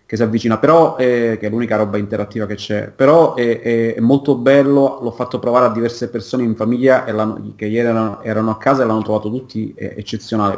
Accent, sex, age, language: native, male, 30-49, Italian